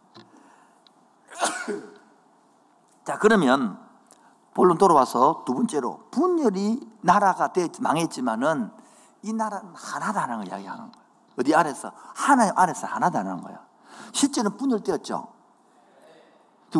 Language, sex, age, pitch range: Korean, male, 50-69, 190-280 Hz